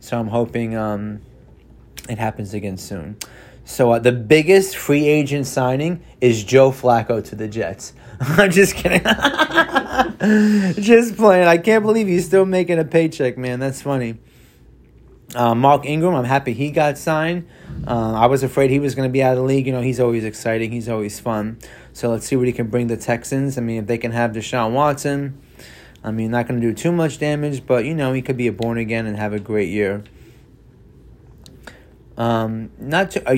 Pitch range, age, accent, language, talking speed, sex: 115-145 Hz, 20-39, American, English, 195 wpm, male